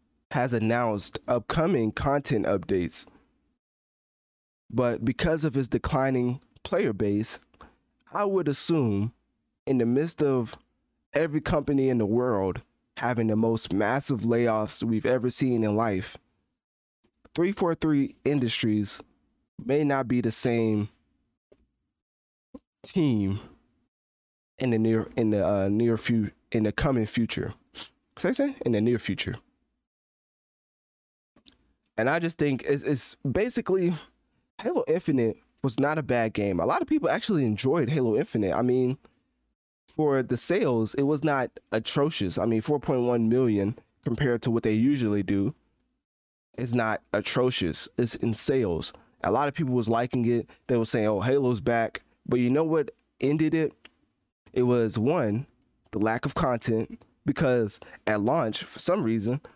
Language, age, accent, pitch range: English, 20-39, American, 110-140 Hz